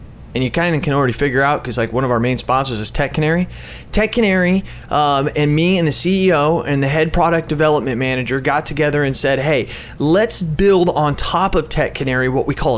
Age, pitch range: 30-49, 130-160 Hz